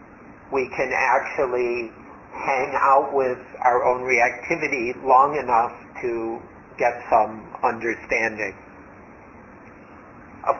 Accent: American